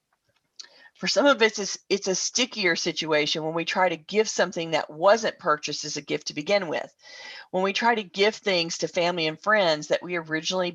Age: 40-59